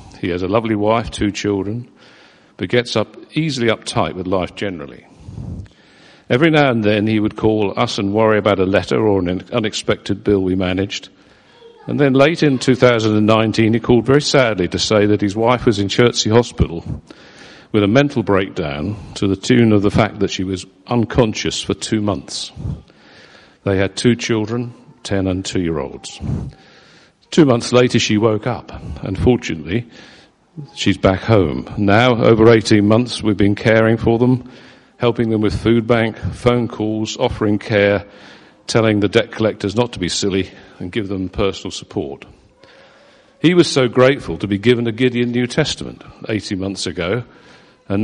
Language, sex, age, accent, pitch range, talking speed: English, male, 50-69, British, 100-120 Hz, 170 wpm